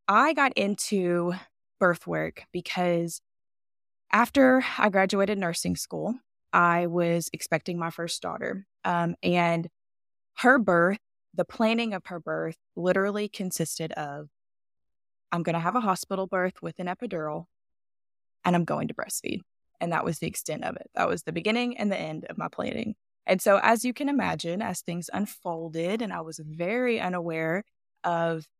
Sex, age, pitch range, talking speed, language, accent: female, 20-39, 165-200 Hz, 160 wpm, English, American